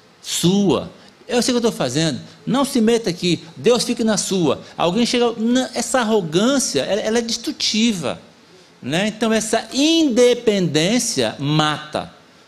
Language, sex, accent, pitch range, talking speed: Portuguese, male, Brazilian, 150-225 Hz, 130 wpm